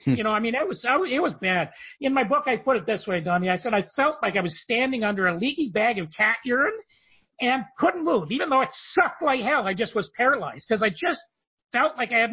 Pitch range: 185-255 Hz